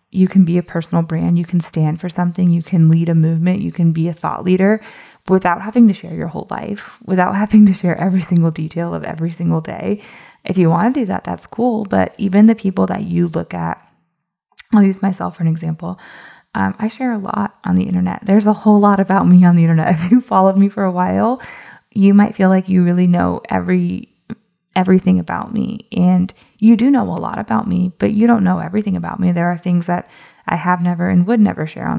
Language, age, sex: English, 20-39, female